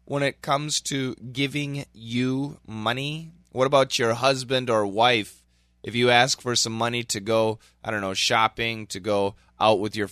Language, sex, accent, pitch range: English, male, American, 100-135 Hz